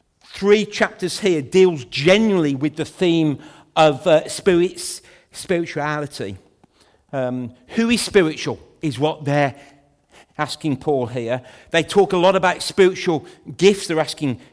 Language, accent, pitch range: English, British, 145-195 Hz